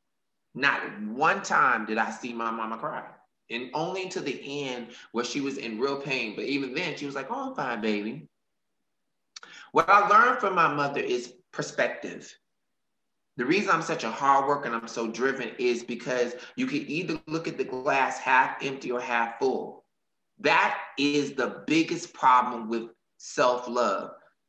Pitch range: 120-160 Hz